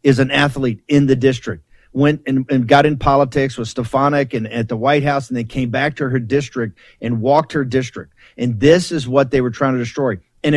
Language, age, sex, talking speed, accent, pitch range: English, 50-69, male, 235 wpm, American, 125-155 Hz